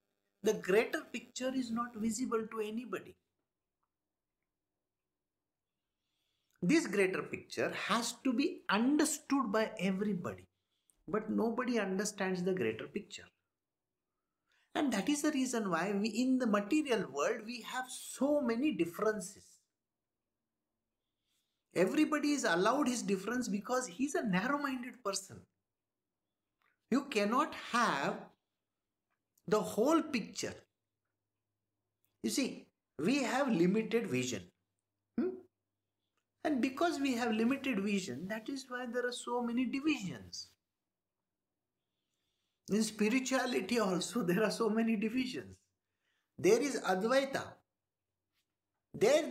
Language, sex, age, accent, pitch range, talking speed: English, male, 50-69, Indian, 165-255 Hz, 105 wpm